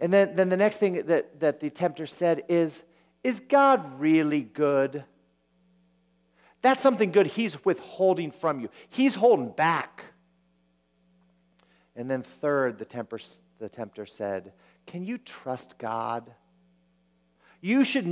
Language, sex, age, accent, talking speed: English, male, 40-59, American, 130 wpm